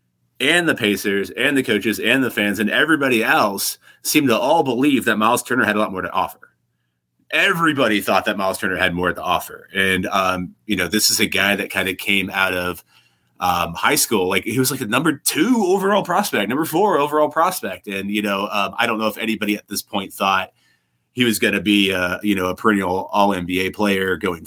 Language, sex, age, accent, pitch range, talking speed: English, male, 30-49, American, 95-120 Hz, 225 wpm